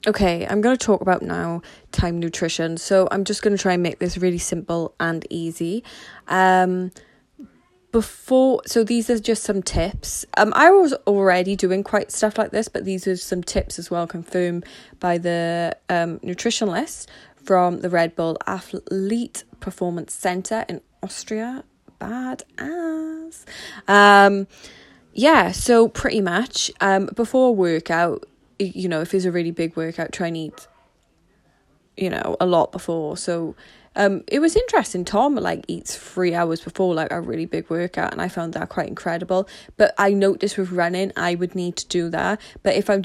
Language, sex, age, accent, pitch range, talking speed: English, female, 20-39, British, 170-200 Hz, 170 wpm